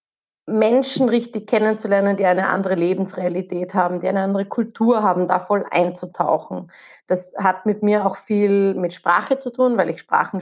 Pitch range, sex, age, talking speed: 185-210 Hz, female, 30-49, 165 wpm